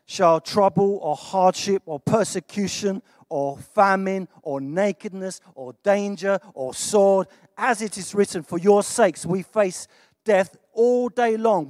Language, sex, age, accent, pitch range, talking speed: English, male, 40-59, British, 150-205 Hz, 140 wpm